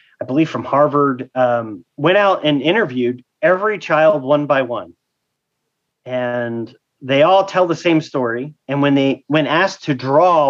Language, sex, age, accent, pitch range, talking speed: English, male, 40-59, American, 130-165 Hz, 160 wpm